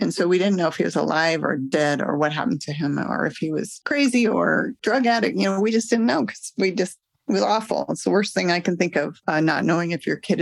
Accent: American